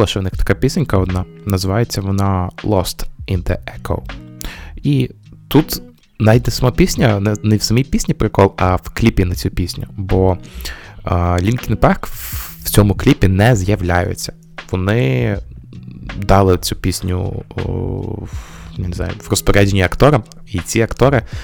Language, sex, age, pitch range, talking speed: Ukrainian, male, 20-39, 90-110 Hz, 145 wpm